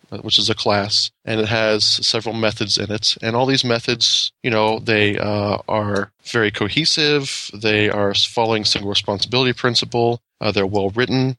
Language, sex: English, male